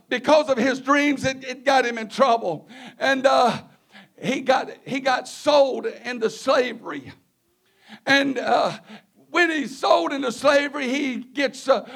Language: English